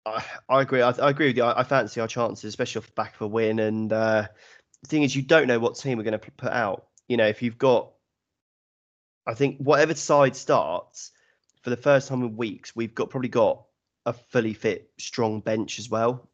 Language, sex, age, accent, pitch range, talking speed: English, male, 20-39, British, 105-120 Hz, 215 wpm